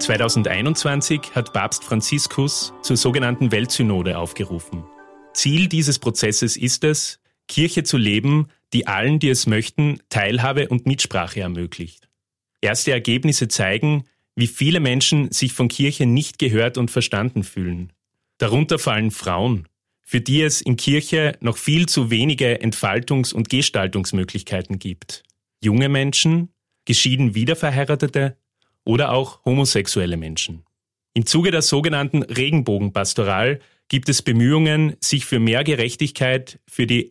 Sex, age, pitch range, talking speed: male, 30-49, 110-140 Hz, 125 wpm